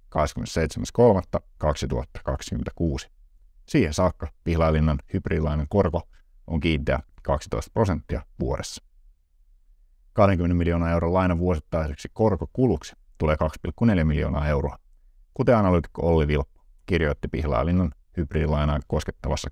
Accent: native